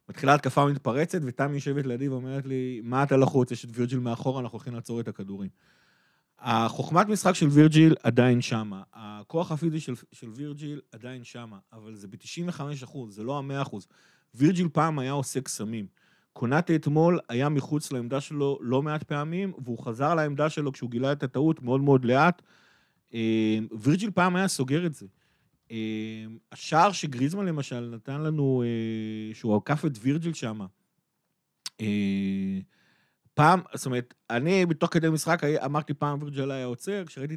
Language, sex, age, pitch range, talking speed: Hebrew, male, 30-49, 120-160 Hz, 155 wpm